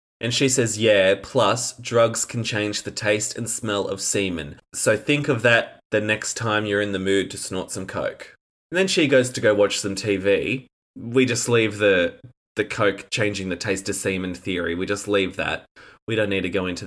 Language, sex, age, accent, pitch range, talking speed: English, male, 20-39, Australian, 100-130 Hz, 215 wpm